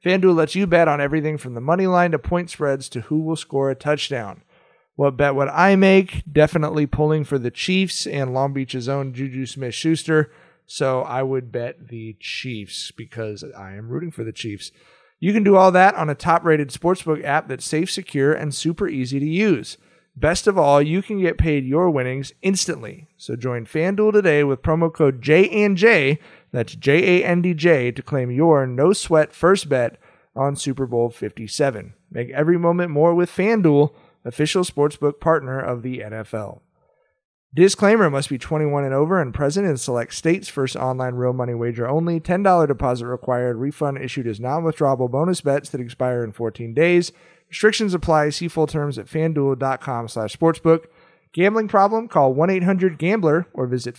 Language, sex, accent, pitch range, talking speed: English, male, American, 130-170 Hz, 175 wpm